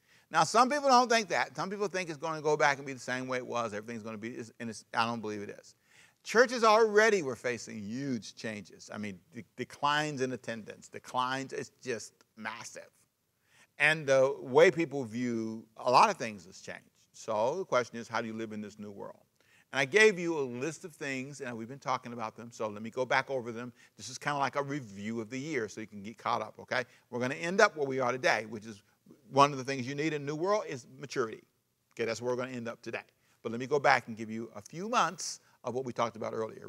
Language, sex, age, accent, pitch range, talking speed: English, male, 50-69, American, 115-155 Hz, 255 wpm